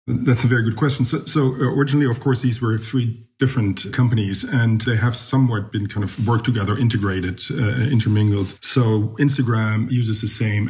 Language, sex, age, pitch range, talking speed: English, male, 40-59, 105-125 Hz, 180 wpm